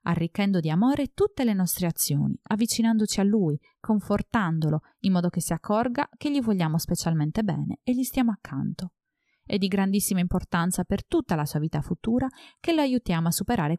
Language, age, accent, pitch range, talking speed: Italian, 30-49, native, 165-235 Hz, 175 wpm